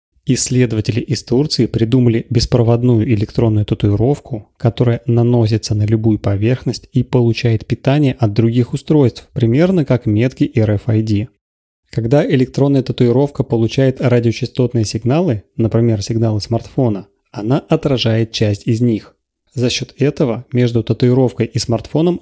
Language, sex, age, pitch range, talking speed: Russian, male, 30-49, 110-130 Hz, 115 wpm